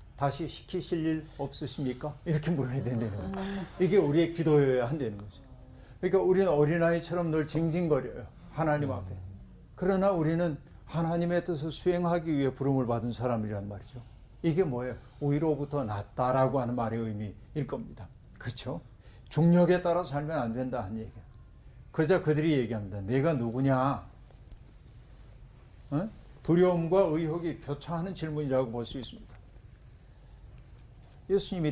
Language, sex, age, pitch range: Korean, male, 50-69, 120-165 Hz